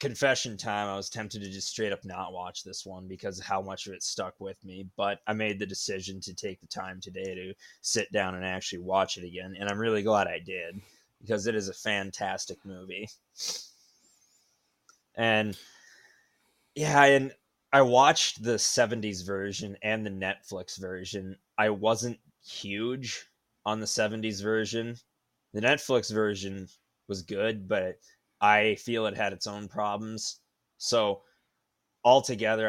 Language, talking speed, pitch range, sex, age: English, 160 wpm, 95-110 Hz, male, 20-39